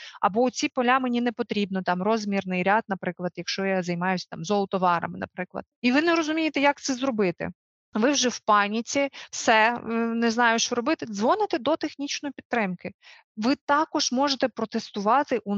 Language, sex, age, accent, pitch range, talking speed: Ukrainian, female, 30-49, native, 200-260 Hz, 160 wpm